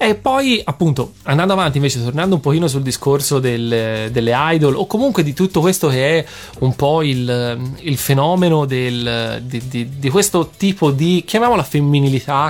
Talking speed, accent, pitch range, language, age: 170 wpm, native, 125-155 Hz, Italian, 20-39